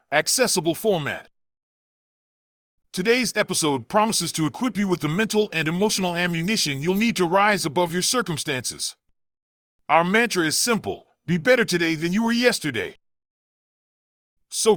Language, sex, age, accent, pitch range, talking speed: English, male, 40-59, American, 150-210 Hz, 135 wpm